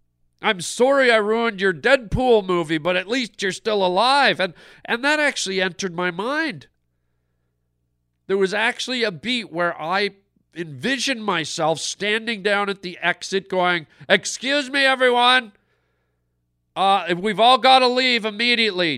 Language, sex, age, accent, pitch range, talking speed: English, male, 40-59, American, 155-225 Hz, 140 wpm